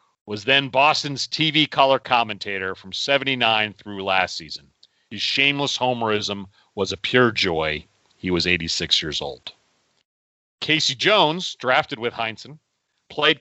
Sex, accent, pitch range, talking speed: male, American, 100-130 Hz, 130 wpm